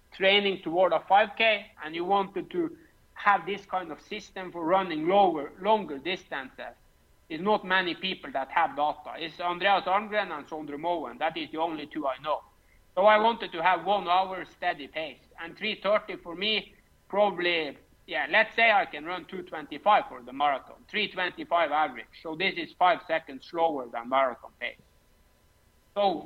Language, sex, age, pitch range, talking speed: English, male, 50-69, 160-200 Hz, 170 wpm